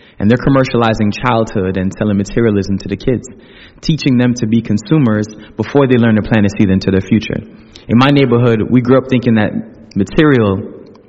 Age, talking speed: 20-39, 185 wpm